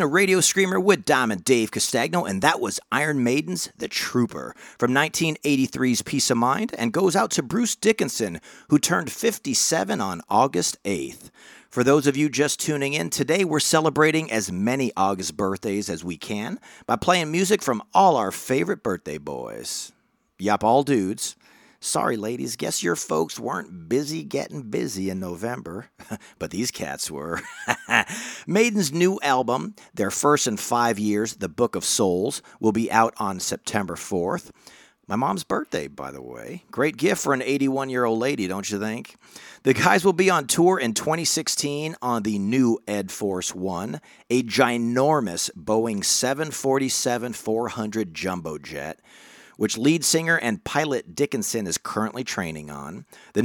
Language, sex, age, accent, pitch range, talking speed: English, male, 40-59, American, 110-160 Hz, 155 wpm